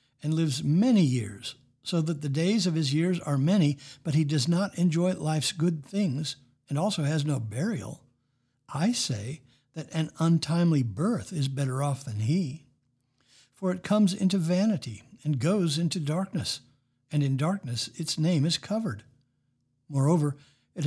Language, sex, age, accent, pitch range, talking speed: English, male, 60-79, American, 130-175 Hz, 160 wpm